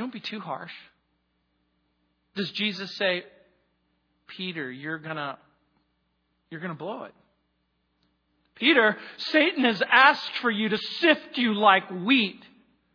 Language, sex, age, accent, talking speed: English, male, 40-59, American, 125 wpm